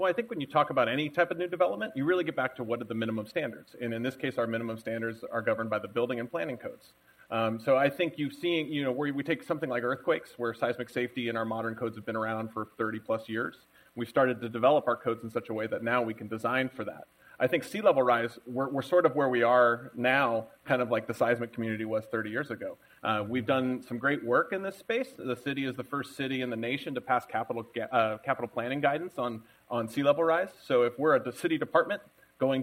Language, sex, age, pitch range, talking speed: English, male, 30-49, 115-145 Hz, 265 wpm